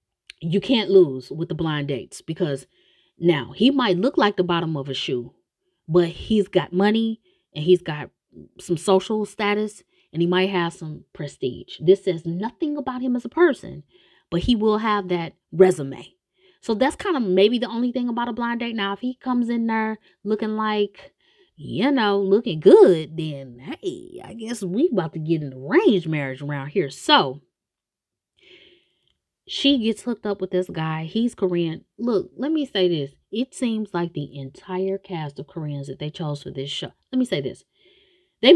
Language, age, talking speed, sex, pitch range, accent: English, 30-49, 185 wpm, female, 160-230 Hz, American